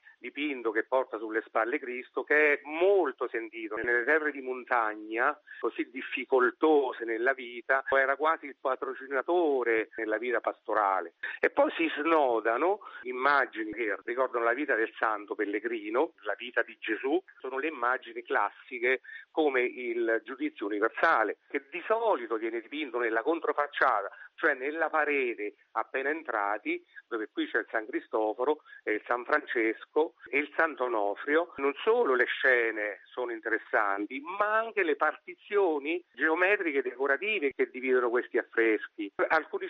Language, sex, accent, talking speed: Italian, male, native, 140 wpm